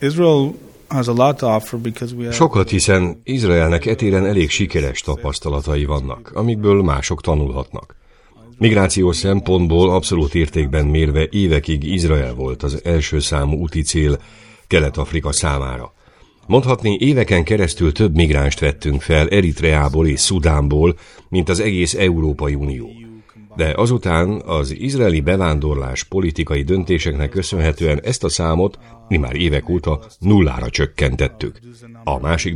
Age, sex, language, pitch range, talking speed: 60-79, male, Hungarian, 75-100 Hz, 110 wpm